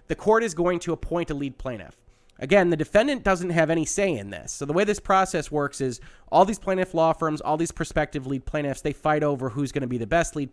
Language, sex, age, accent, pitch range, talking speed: English, male, 30-49, American, 135-175 Hz, 255 wpm